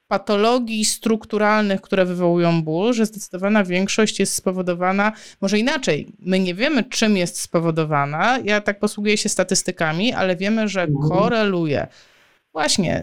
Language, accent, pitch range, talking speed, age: Polish, native, 190-245 Hz, 130 wpm, 30-49